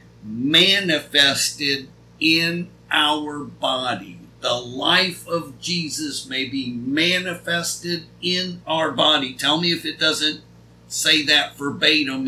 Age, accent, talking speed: 50-69, American, 110 wpm